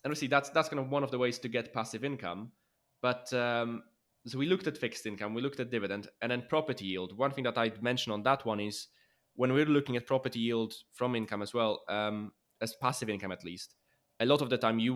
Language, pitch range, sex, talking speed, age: English, 110-130 Hz, male, 245 wpm, 20-39